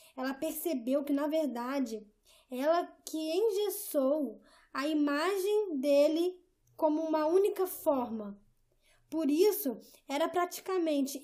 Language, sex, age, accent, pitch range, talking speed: Portuguese, female, 10-29, Brazilian, 275-335 Hz, 100 wpm